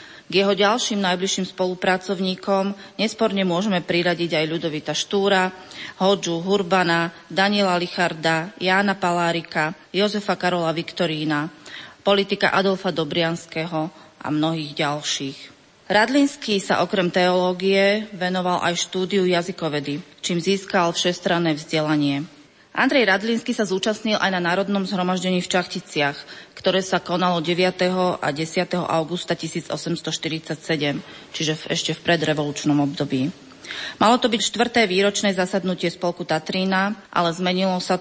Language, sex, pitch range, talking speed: Slovak, female, 160-195 Hz, 115 wpm